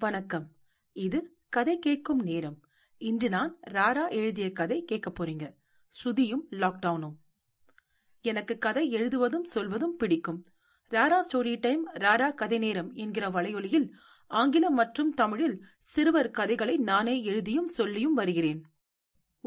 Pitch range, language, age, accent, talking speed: 180-265 Hz, Tamil, 40-59, native, 75 wpm